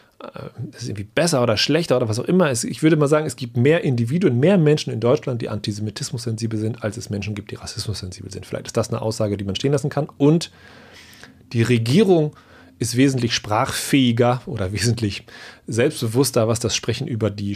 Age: 40-59